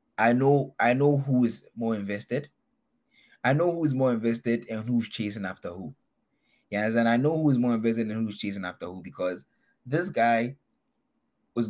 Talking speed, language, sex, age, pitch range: 185 wpm, English, male, 20-39, 100-130 Hz